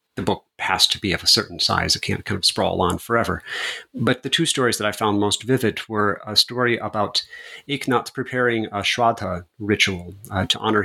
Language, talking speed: English, 205 wpm